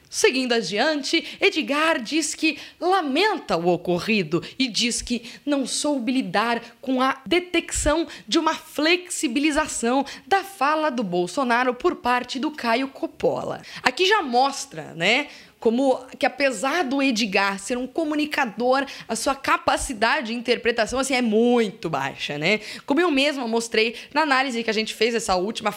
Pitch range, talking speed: 220-300 Hz, 145 wpm